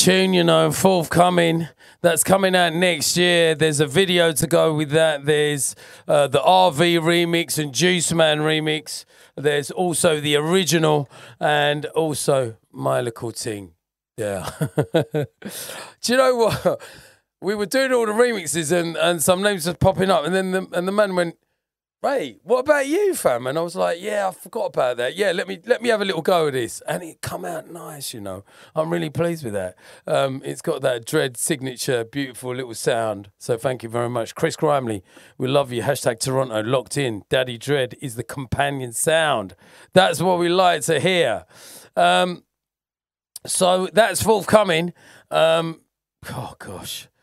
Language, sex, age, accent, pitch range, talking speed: English, male, 30-49, British, 135-180 Hz, 175 wpm